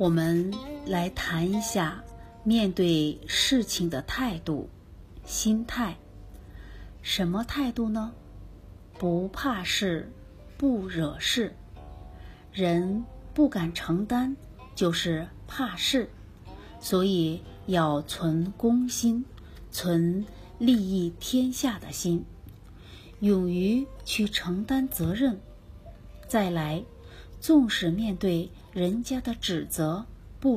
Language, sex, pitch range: Chinese, female, 145-225 Hz